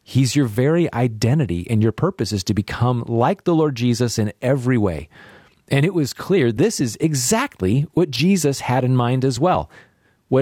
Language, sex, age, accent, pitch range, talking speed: English, male, 40-59, American, 105-135 Hz, 185 wpm